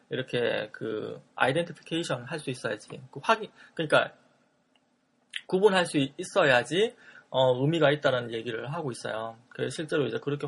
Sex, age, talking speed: male, 20-39, 120 wpm